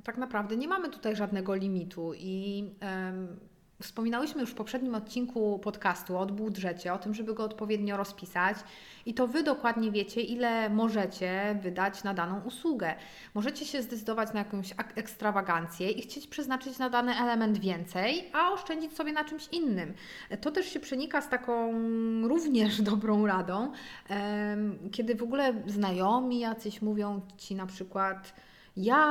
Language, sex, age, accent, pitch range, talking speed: Polish, female, 30-49, native, 195-255 Hz, 145 wpm